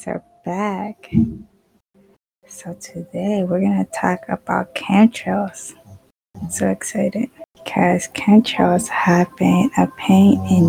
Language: English